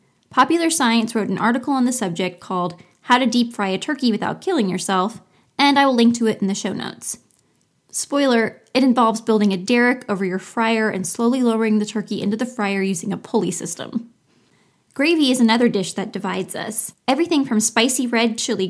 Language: English